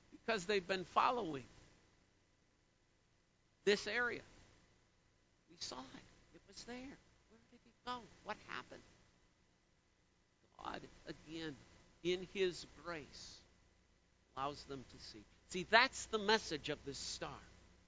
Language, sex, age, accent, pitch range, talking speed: English, male, 60-79, American, 160-270 Hz, 110 wpm